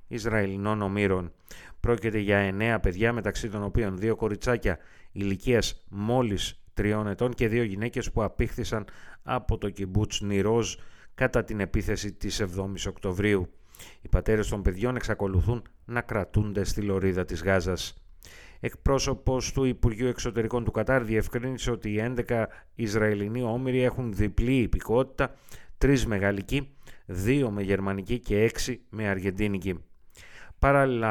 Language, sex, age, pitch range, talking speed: Greek, male, 30-49, 100-125 Hz, 125 wpm